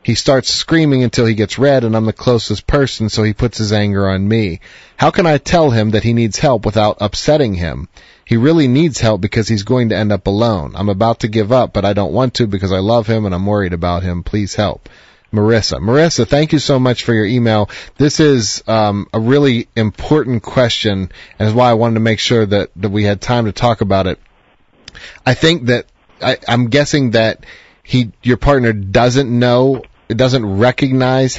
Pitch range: 105-125 Hz